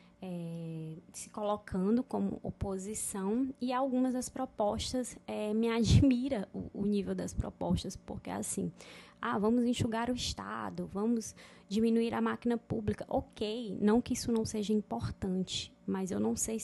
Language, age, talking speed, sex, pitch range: Portuguese, 20-39, 150 wpm, female, 195-225 Hz